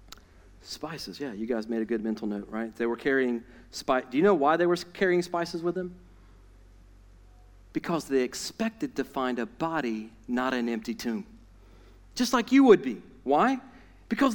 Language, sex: English, male